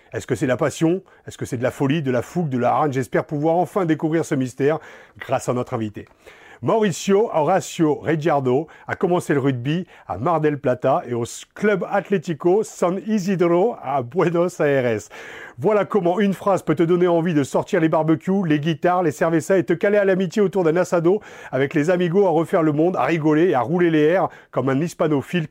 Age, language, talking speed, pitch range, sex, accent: 40-59, French, 205 wpm, 140-175 Hz, male, French